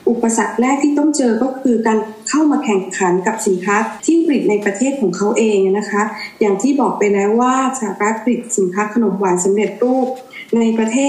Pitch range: 205-255 Hz